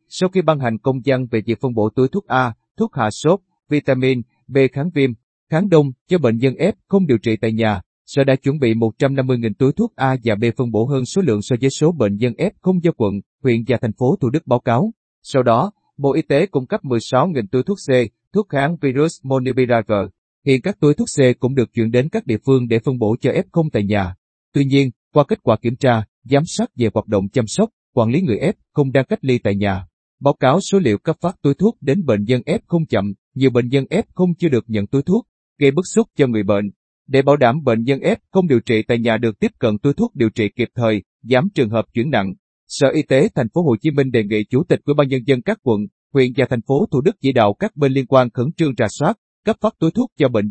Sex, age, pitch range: male, 30-49, 115-155 Hz